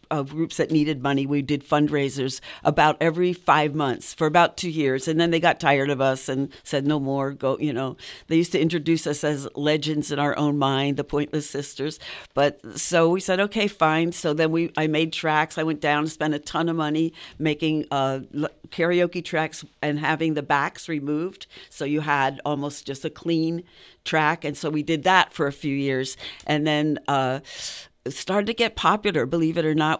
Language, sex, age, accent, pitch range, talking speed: English, female, 50-69, American, 150-175 Hz, 205 wpm